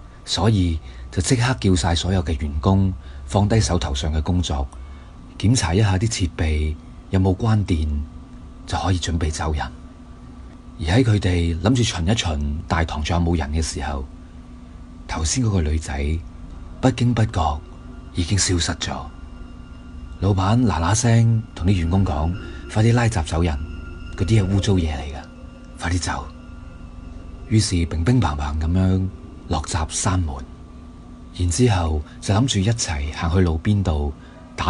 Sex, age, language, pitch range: male, 30-49, Chinese, 80-100 Hz